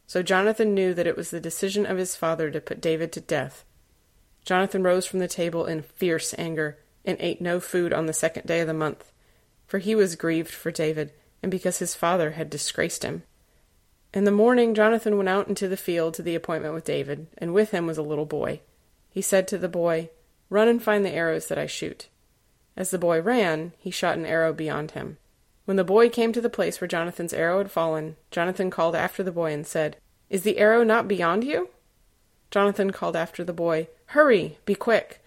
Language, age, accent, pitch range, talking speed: English, 30-49, American, 160-195 Hz, 215 wpm